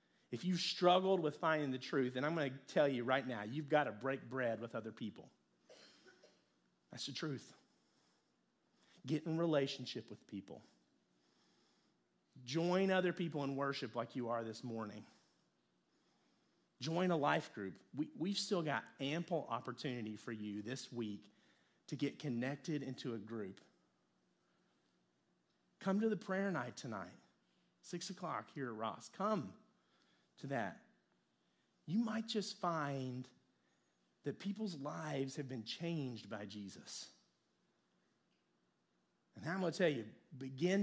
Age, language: 40-59, English